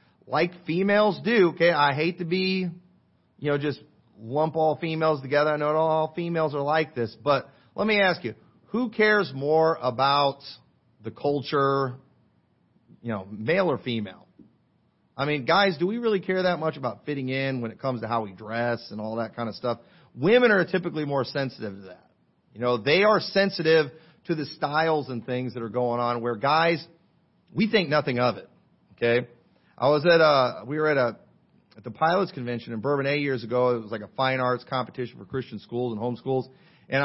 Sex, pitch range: male, 125-185 Hz